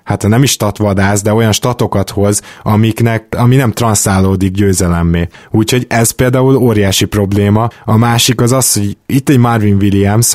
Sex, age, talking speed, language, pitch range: male, 20-39, 160 wpm, Hungarian, 100-120 Hz